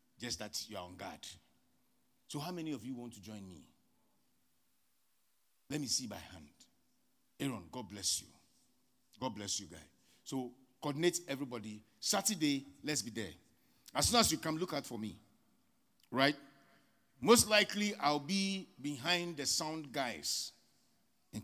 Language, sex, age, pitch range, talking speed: English, male, 50-69, 100-155 Hz, 150 wpm